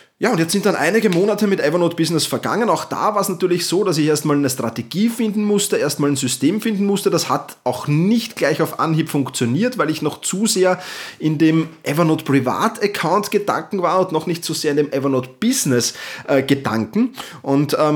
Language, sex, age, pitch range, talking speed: German, male, 30-49, 140-195 Hz, 205 wpm